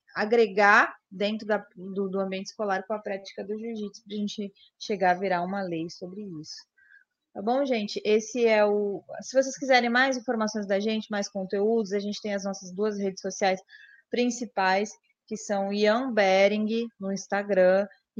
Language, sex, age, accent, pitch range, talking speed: Portuguese, female, 20-39, Brazilian, 205-240 Hz, 170 wpm